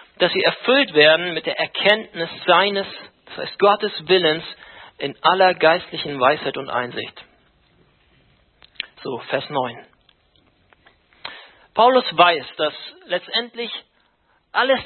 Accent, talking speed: German, 105 wpm